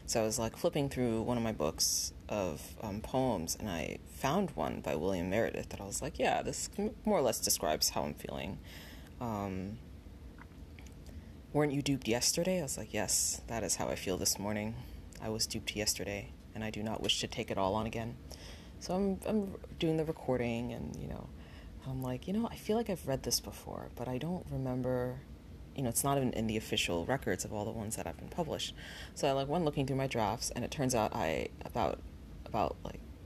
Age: 20-39